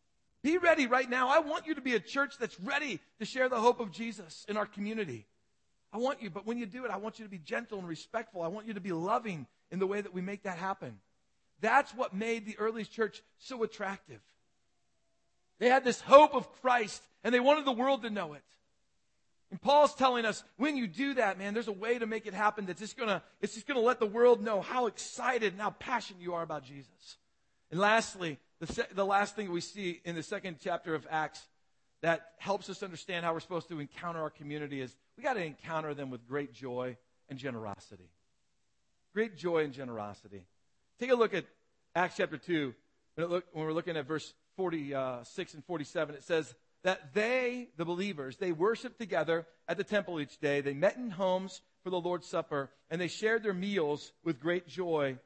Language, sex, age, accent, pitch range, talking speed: English, male, 40-59, American, 150-220 Hz, 210 wpm